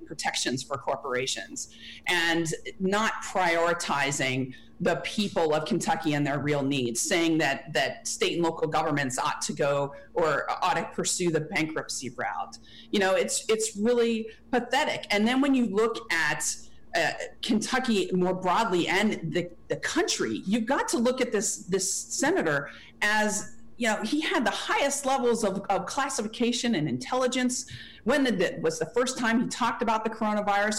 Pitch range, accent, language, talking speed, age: 170-235 Hz, American, English, 160 wpm, 40-59